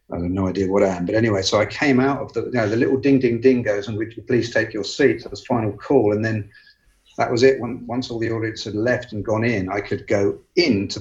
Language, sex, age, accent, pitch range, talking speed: English, male, 50-69, British, 95-120 Hz, 290 wpm